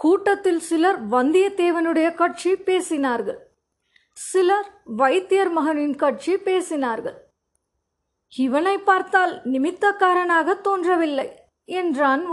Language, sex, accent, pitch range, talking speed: Tamil, female, native, 310-375 Hz, 75 wpm